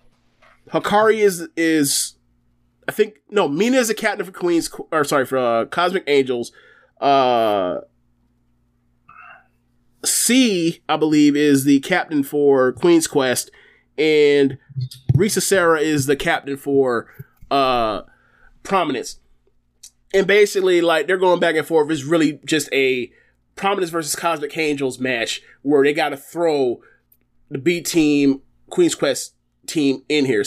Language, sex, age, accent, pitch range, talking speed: English, male, 20-39, American, 130-170 Hz, 135 wpm